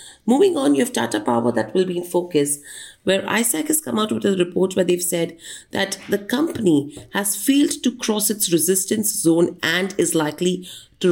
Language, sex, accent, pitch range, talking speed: English, female, Indian, 165-210 Hz, 195 wpm